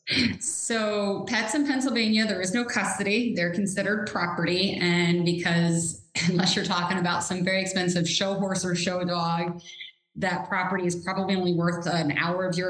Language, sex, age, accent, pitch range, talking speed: English, female, 20-39, American, 160-190 Hz, 165 wpm